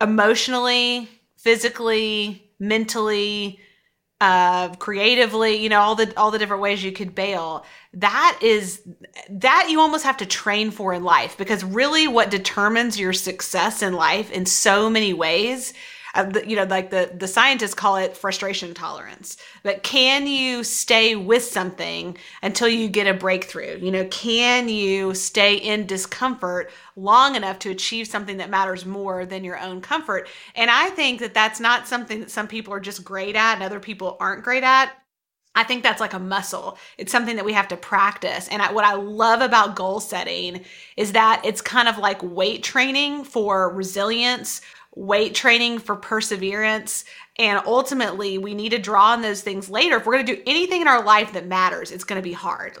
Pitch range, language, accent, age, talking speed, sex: 195-235 Hz, English, American, 30-49, 185 wpm, female